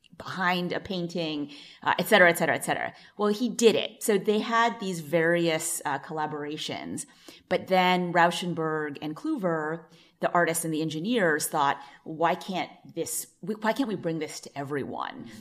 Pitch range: 155-185 Hz